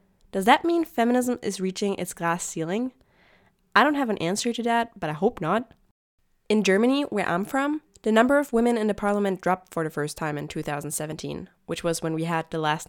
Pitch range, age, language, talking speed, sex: 170-230 Hz, 10-29, English, 215 wpm, female